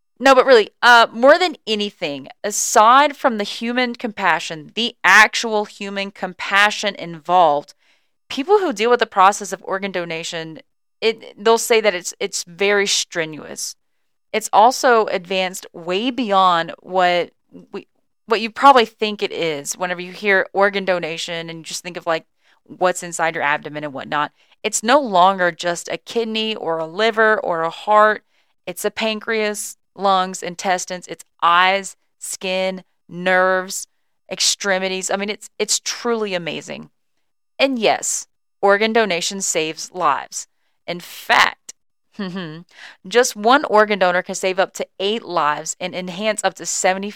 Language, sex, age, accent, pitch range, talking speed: English, female, 30-49, American, 175-220 Hz, 145 wpm